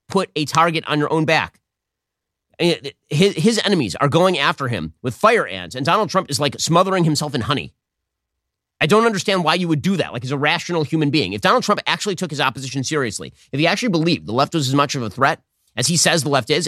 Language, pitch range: English, 135-185 Hz